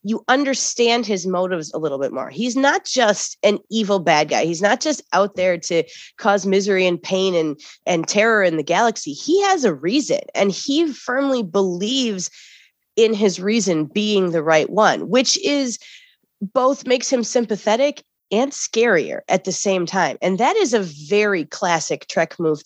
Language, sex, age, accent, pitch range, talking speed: English, female, 30-49, American, 185-255 Hz, 175 wpm